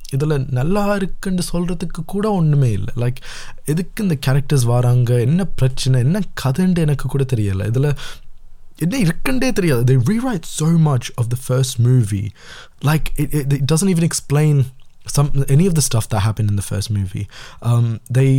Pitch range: 105-140 Hz